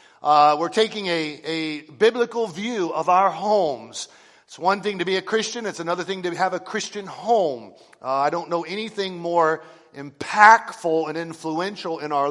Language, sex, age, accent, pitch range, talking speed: English, male, 50-69, American, 155-195 Hz, 175 wpm